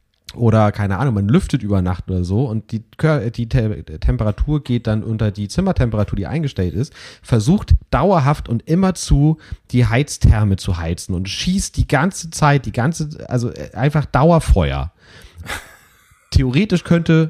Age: 30-49